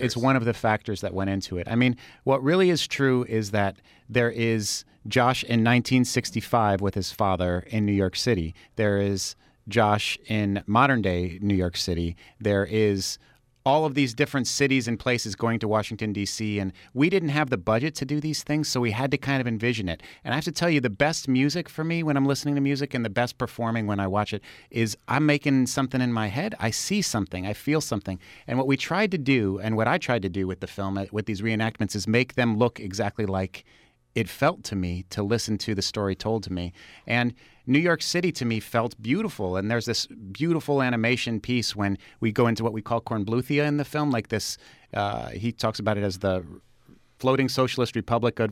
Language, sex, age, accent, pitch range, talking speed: English, male, 40-59, American, 100-130 Hz, 220 wpm